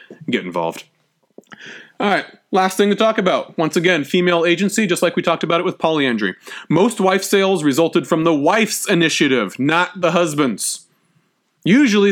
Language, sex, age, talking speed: English, male, 30-49, 165 wpm